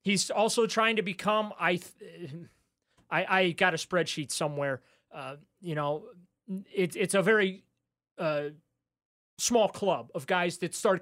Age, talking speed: 30-49, 140 wpm